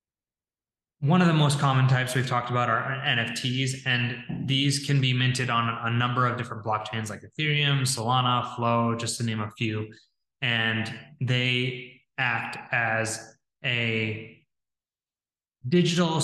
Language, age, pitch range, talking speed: English, 20-39, 115-135 Hz, 135 wpm